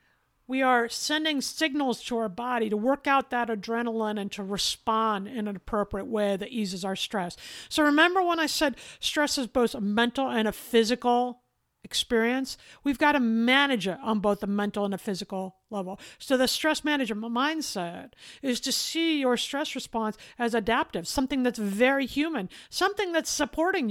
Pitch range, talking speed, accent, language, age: 220-290 Hz, 175 wpm, American, English, 50-69